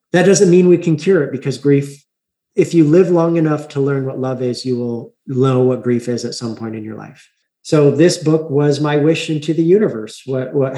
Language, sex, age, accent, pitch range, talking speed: English, male, 40-59, American, 125-150 Hz, 235 wpm